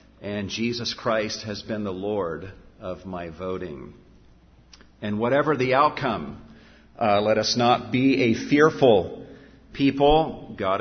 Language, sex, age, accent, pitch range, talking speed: English, male, 50-69, American, 100-130 Hz, 130 wpm